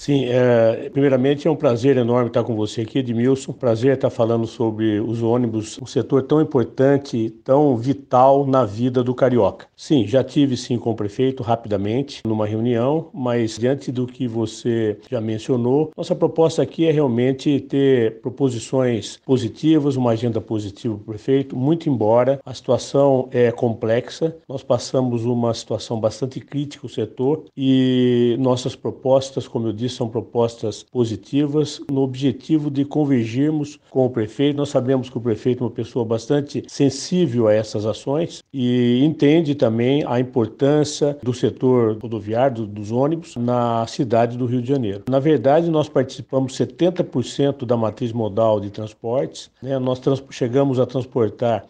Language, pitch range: Portuguese, 115-140 Hz